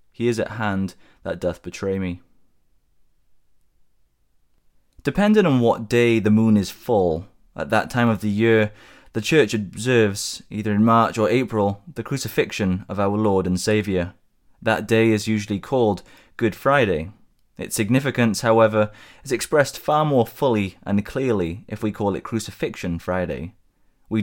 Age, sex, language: 20-39, male, English